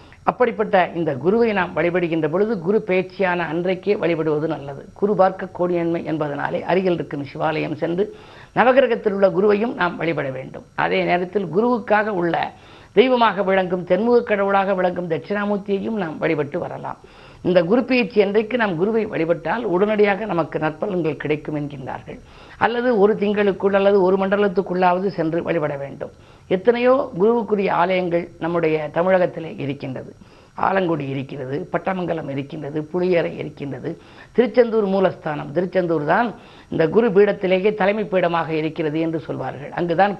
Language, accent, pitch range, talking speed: Tamil, native, 165-205 Hz, 125 wpm